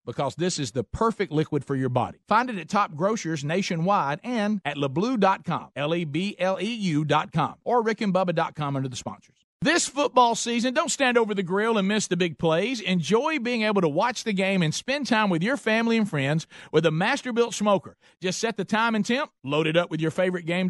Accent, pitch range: American, 160-220 Hz